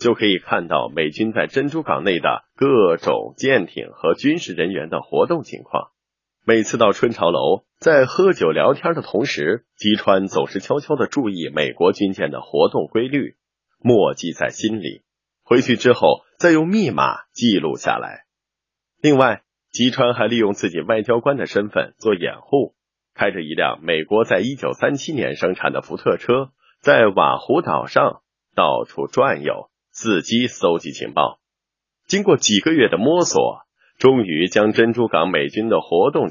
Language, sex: Chinese, male